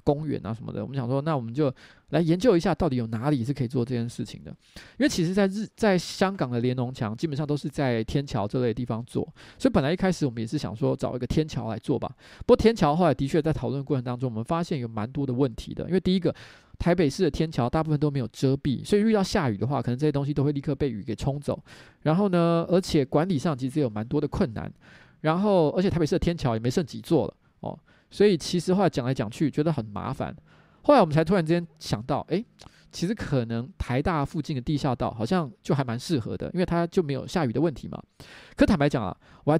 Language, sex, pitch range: Chinese, male, 125-170 Hz